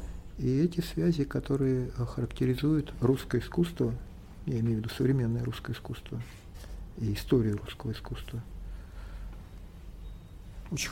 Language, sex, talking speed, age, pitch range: Russian, male, 105 wpm, 50-69, 95-140 Hz